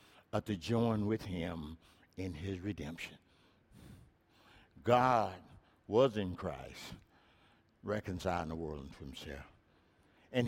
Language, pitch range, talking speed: English, 90-145 Hz, 105 wpm